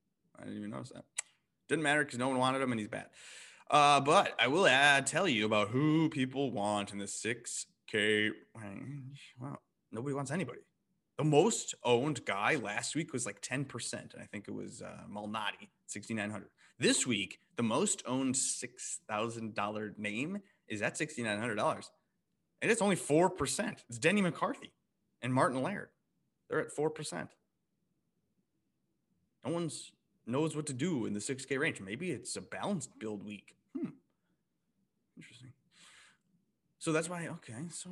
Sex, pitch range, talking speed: male, 115-155 Hz, 155 wpm